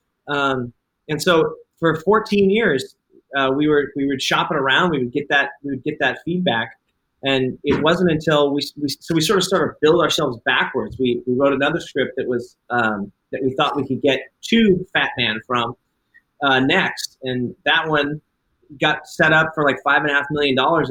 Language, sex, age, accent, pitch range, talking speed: English, male, 30-49, American, 130-165 Hz, 205 wpm